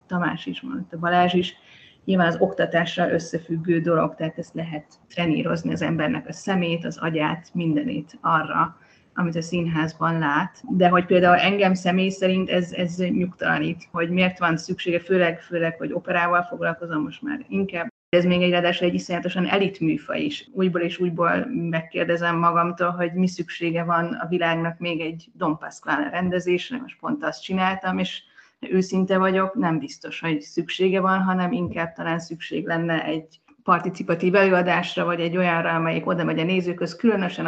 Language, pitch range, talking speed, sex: Hungarian, 165-185 Hz, 160 wpm, female